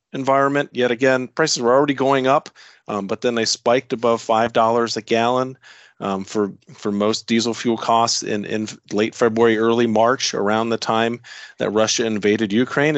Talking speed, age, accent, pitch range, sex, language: 175 wpm, 40-59, American, 110-130 Hz, male, English